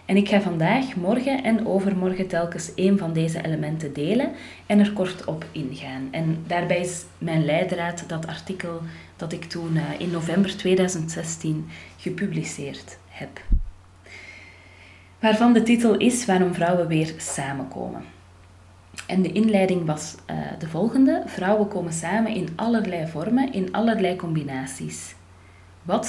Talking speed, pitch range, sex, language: 130 wpm, 140-205 Hz, female, Dutch